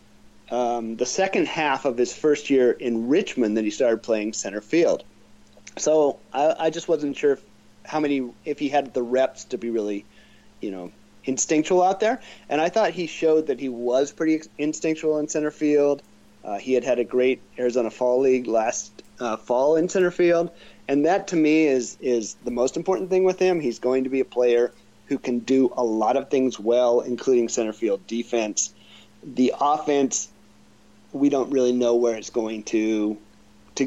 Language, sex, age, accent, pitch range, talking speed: English, male, 30-49, American, 115-145 Hz, 190 wpm